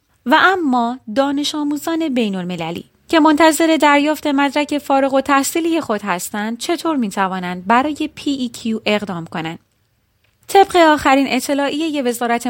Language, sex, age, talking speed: Persian, female, 30-49, 125 wpm